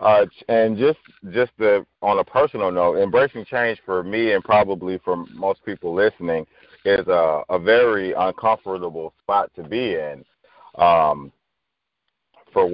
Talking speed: 140 wpm